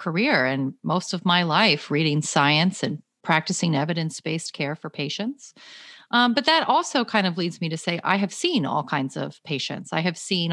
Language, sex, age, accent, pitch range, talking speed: English, female, 30-49, American, 160-215 Hz, 195 wpm